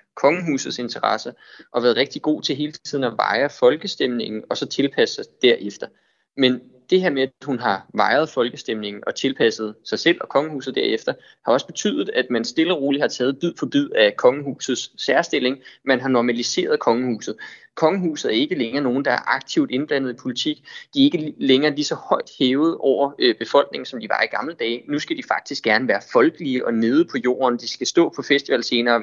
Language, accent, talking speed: Danish, native, 200 wpm